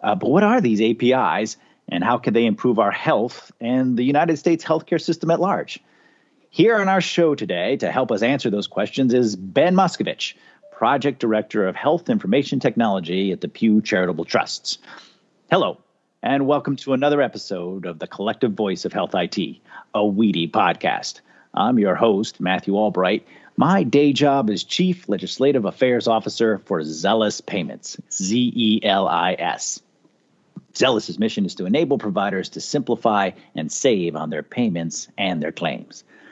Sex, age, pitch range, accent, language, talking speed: male, 40-59, 105-150 Hz, American, English, 155 wpm